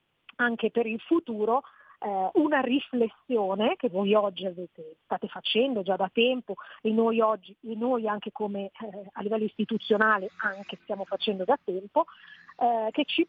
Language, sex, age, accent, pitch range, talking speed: Italian, female, 40-59, native, 200-260 Hz, 135 wpm